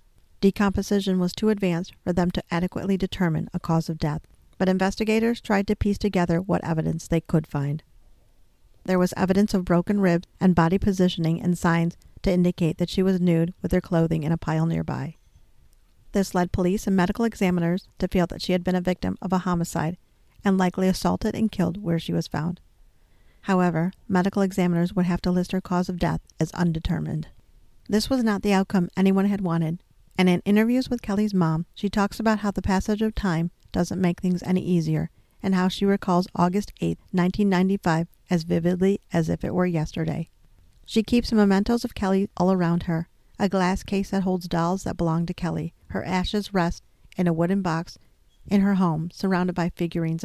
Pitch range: 170-195 Hz